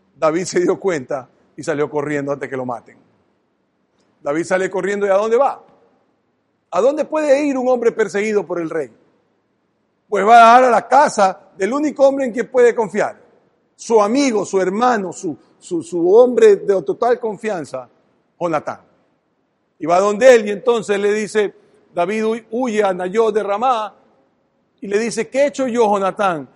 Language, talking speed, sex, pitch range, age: Spanish, 175 wpm, male, 205-265 Hz, 50-69